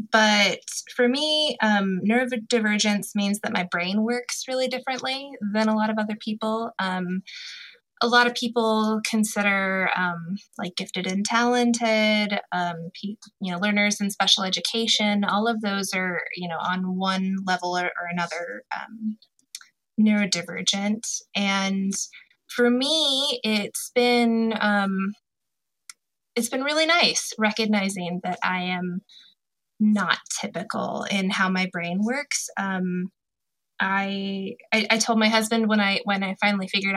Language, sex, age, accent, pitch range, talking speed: English, female, 20-39, American, 190-230 Hz, 135 wpm